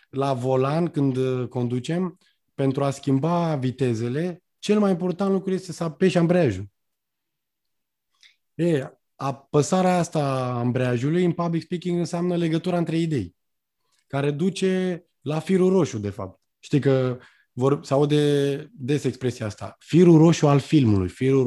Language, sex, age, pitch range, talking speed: Romanian, male, 20-39, 130-175 Hz, 130 wpm